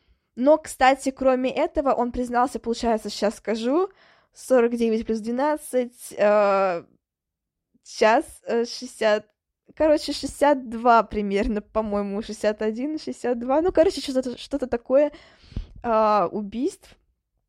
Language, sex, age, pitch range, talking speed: Russian, female, 20-39, 210-260 Hz, 95 wpm